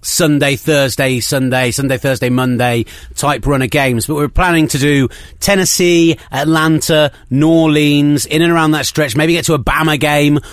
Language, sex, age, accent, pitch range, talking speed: English, male, 30-49, British, 120-155 Hz, 165 wpm